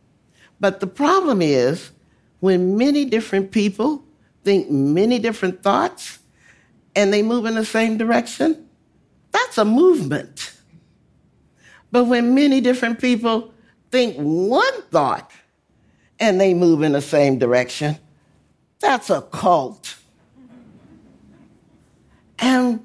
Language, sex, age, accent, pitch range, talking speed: English, male, 60-79, American, 145-235 Hz, 110 wpm